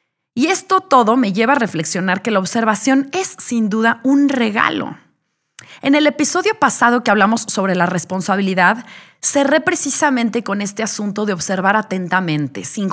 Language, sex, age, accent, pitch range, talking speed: Spanish, female, 30-49, Mexican, 180-255 Hz, 155 wpm